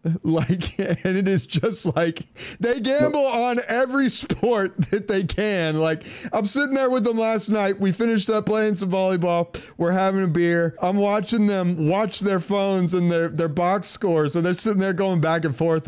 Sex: male